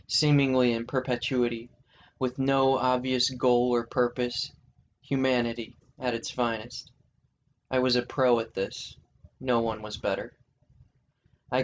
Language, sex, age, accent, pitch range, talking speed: English, male, 20-39, American, 115-130 Hz, 125 wpm